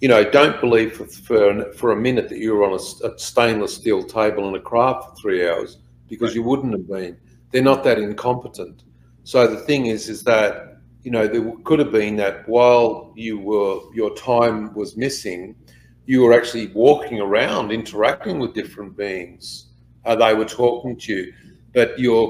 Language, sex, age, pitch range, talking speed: English, male, 50-69, 105-125 Hz, 190 wpm